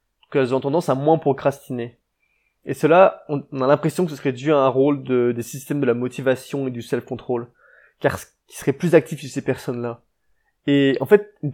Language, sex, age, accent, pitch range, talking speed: French, male, 20-39, French, 125-150 Hz, 215 wpm